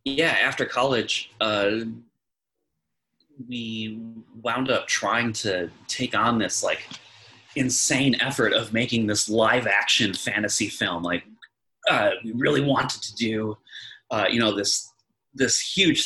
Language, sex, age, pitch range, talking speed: English, male, 30-49, 105-140 Hz, 125 wpm